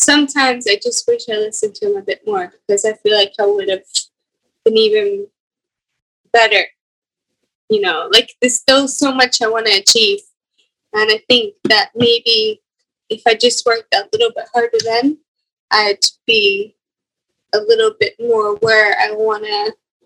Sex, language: female, English